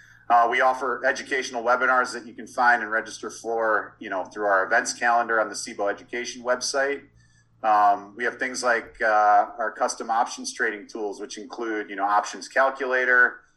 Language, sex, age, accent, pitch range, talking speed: English, male, 30-49, American, 110-125 Hz, 175 wpm